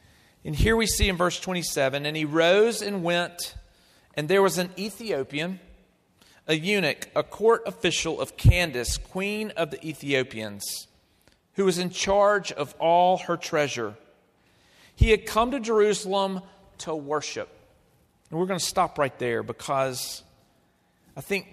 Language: English